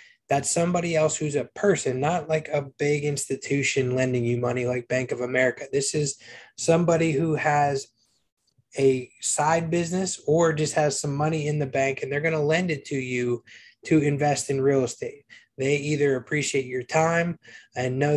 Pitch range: 130-155 Hz